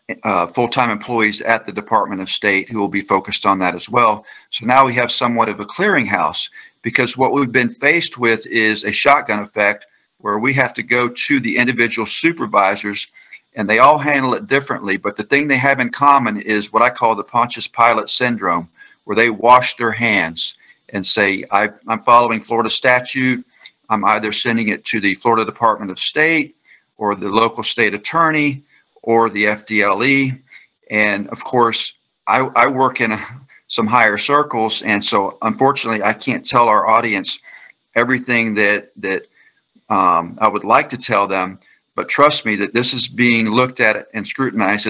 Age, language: 50-69, English